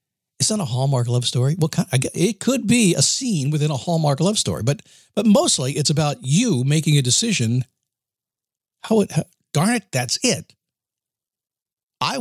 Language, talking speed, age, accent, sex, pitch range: English, 165 wpm, 50-69, American, male, 120-170 Hz